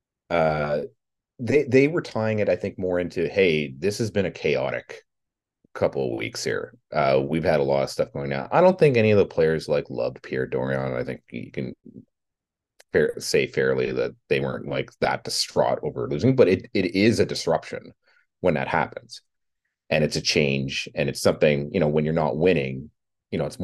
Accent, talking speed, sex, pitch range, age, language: American, 205 wpm, male, 75-120 Hz, 30-49, English